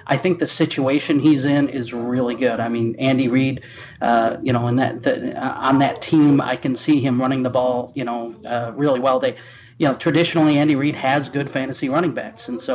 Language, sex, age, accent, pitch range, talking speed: English, male, 30-49, American, 125-145 Hz, 225 wpm